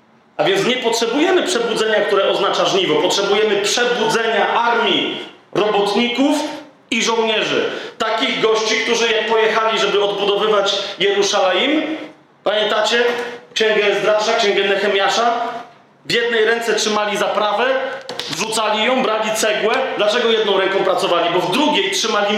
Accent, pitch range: native, 205-255 Hz